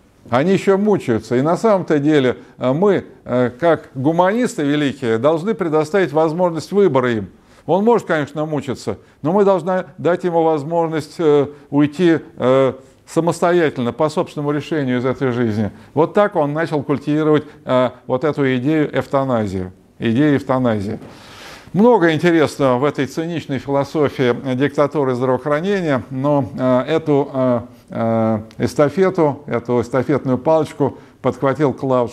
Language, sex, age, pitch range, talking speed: Russian, male, 50-69, 120-150 Hz, 110 wpm